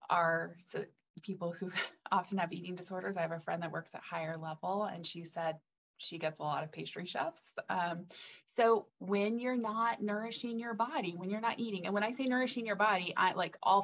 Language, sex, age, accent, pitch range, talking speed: English, female, 20-39, American, 160-200 Hz, 215 wpm